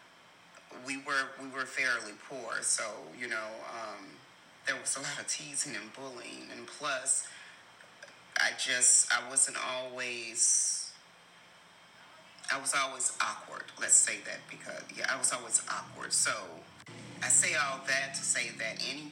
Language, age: English, 30-49